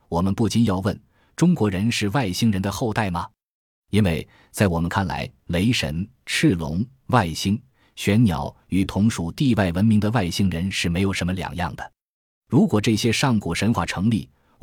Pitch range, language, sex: 85-115 Hz, Chinese, male